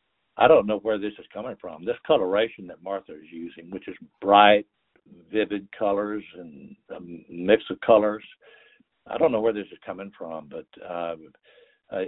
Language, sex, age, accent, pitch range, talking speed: English, male, 60-79, American, 90-115 Hz, 170 wpm